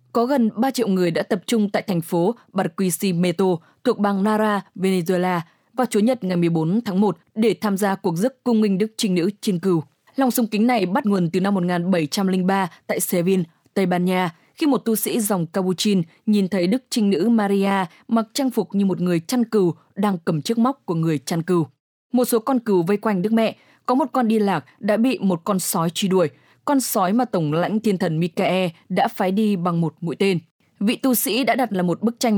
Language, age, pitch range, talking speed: English, 20-39, 175-225 Hz, 225 wpm